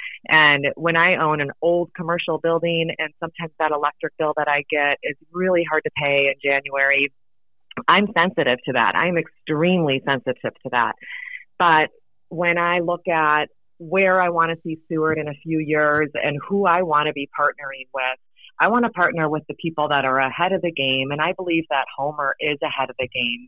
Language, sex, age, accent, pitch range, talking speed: English, female, 30-49, American, 135-165 Hz, 200 wpm